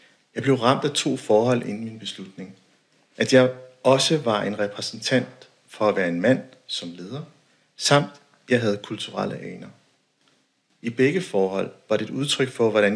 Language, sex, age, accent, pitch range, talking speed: Danish, male, 60-79, native, 95-125 Hz, 165 wpm